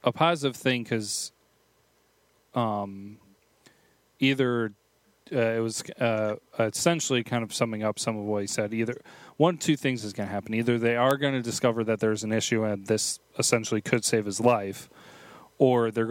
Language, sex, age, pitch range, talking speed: English, male, 30-49, 105-120 Hz, 175 wpm